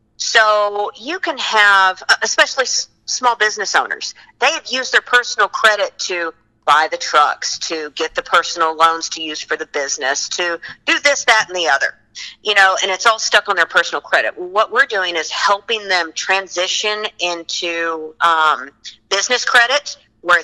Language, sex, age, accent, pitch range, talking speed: English, female, 50-69, American, 160-215 Hz, 165 wpm